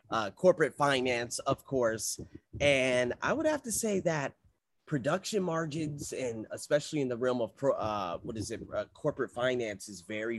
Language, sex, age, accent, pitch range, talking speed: English, male, 30-49, American, 110-140 Hz, 160 wpm